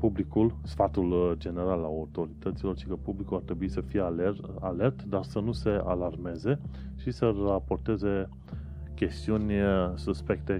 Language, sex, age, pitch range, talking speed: Romanian, male, 30-49, 75-100 Hz, 130 wpm